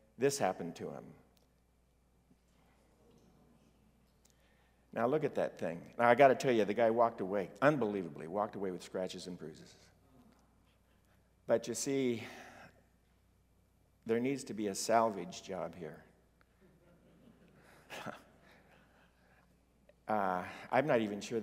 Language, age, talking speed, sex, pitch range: English, 50-69, 120 wpm, male, 75-115 Hz